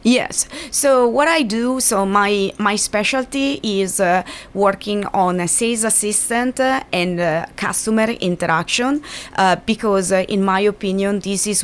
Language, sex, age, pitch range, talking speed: English, female, 30-49, 185-225 Hz, 150 wpm